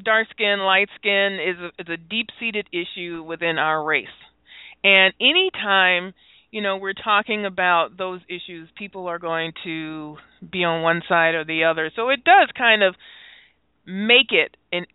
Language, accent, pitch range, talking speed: English, American, 180-215 Hz, 170 wpm